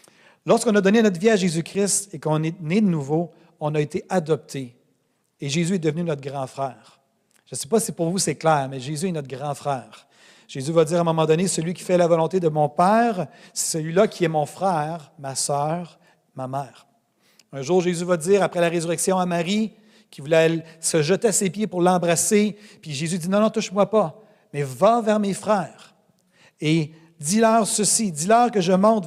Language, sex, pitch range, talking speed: French, male, 155-205 Hz, 220 wpm